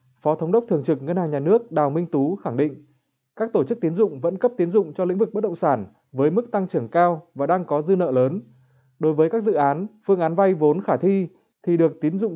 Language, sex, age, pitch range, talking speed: Vietnamese, male, 20-39, 150-190 Hz, 265 wpm